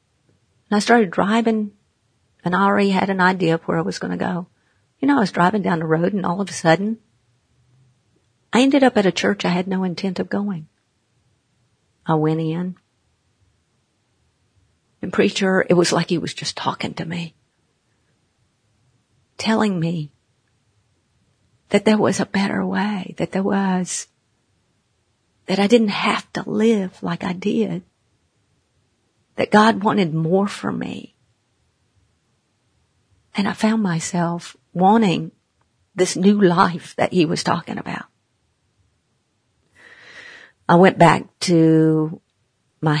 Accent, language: American, English